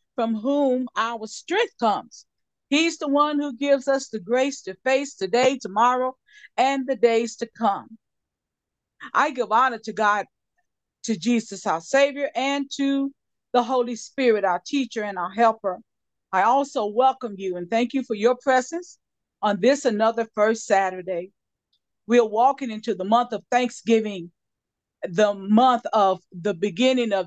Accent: American